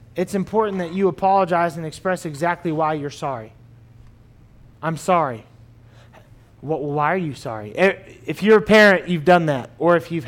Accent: American